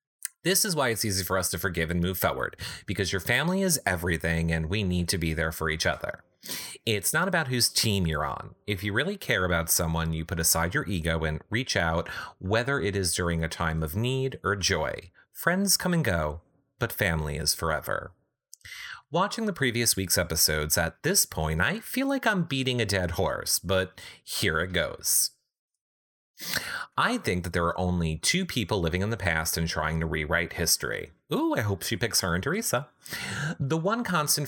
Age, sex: 30-49, male